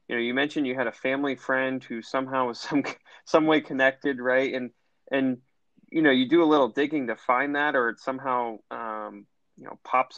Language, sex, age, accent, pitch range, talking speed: English, male, 20-39, American, 115-135 Hz, 210 wpm